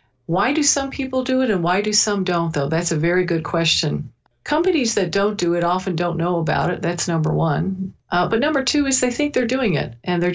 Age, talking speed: 50-69, 245 wpm